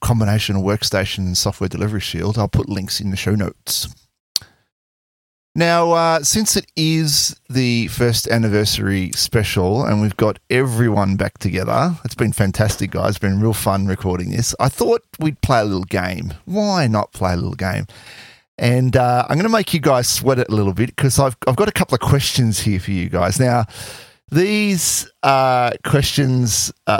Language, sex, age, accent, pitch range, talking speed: English, male, 30-49, Australian, 100-135 Hz, 180 wpm